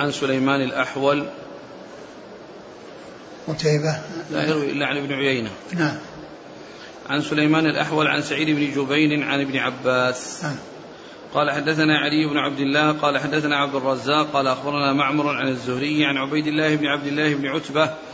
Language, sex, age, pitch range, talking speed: Arabic, male, 40-59, 145-155 Hz, 140 wpm